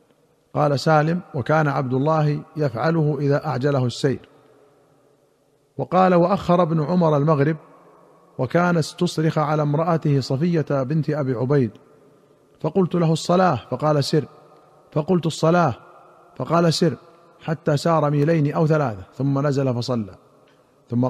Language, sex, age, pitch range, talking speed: Arabic, male, 50-69, 145-165 Hz, 115 wpm